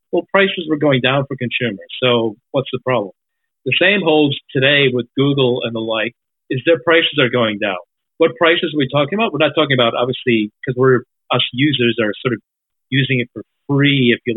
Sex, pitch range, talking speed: male, 120-150 Hz, 210 wpm